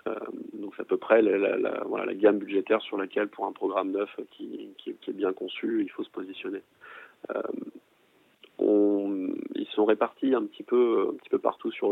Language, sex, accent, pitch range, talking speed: French, male, French, 315-410 Hz, 205 wpm